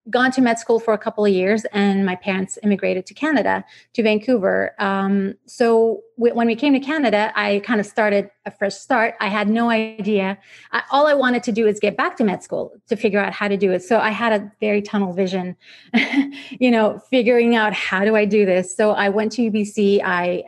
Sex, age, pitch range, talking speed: female, 30-49, 205-250 Hz, 225 wpm